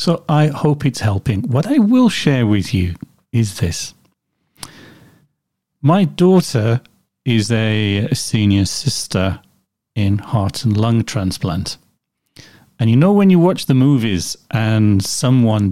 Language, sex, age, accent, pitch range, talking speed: English, male, 40-59, British, 110-145 Hz, 130 wpm